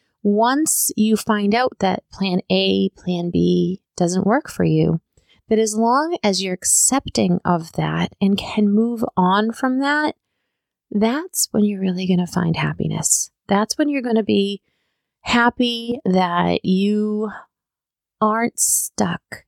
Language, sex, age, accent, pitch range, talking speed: English, female, 30-49, American, 175-230 Hz, 140 wpm